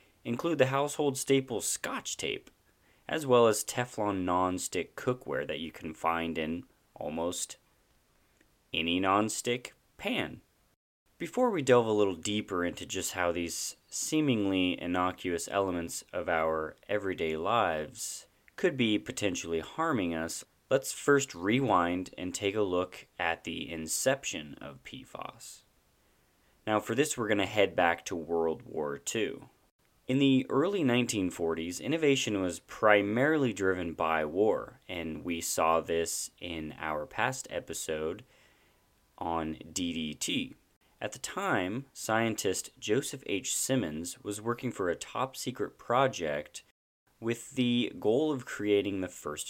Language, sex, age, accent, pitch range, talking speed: English, male, 30-49, American, 85-120 Hz, 130 wpm